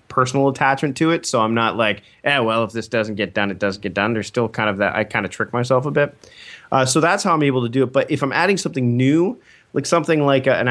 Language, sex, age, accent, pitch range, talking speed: English, male, 30-49, American, 105-135 Hz, 285 wpm